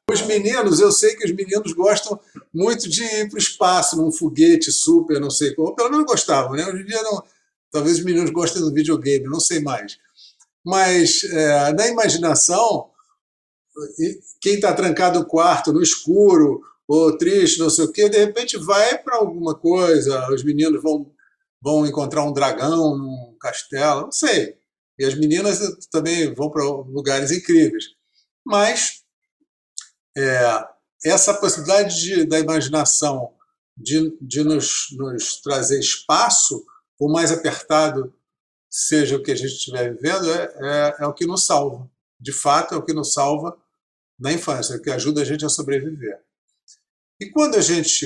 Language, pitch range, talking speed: Portuguese, 150-225 Hz, 160 wpm